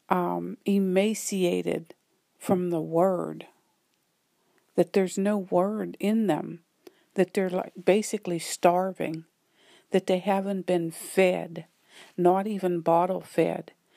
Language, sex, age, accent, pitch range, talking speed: English, female, 50-69, American, 180-210 Hz, 105 wpm